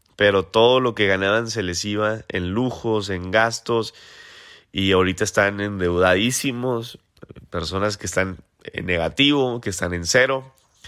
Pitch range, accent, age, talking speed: 100-135 Hz, Mexican, 30-49, 140 wpm